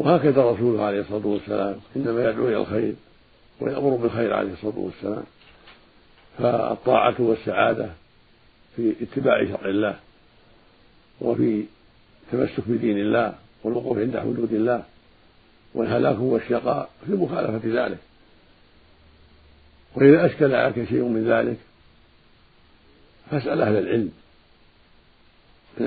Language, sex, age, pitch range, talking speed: Arabic, male, 50-69, 105-120 Hz, 100 wpm